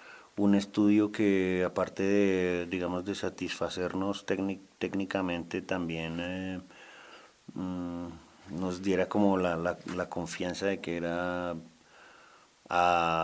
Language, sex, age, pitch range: Spanish, male, 40-59, 85-95 Hz